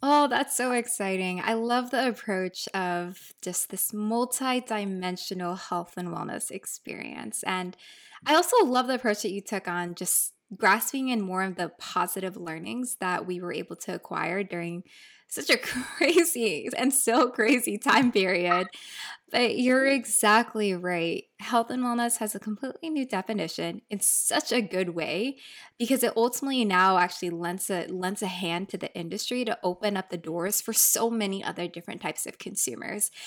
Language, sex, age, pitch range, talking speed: English, female, 20-39, 190-245 Hz, 165 wpm